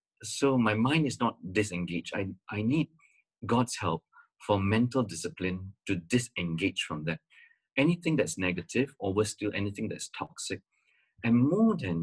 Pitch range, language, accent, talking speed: 90-120 Hz, English, Malaysian, 150 wpm